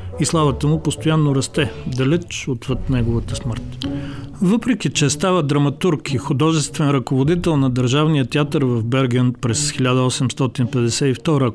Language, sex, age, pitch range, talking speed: Bulgarian, male, 40-59, 125-155 Hz, 120 wpm